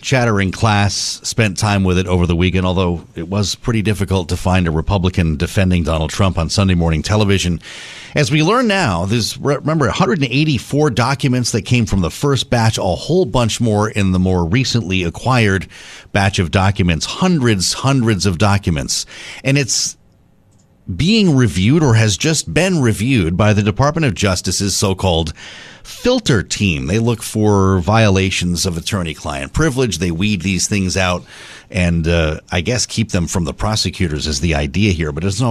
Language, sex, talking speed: English, male, 170 wpm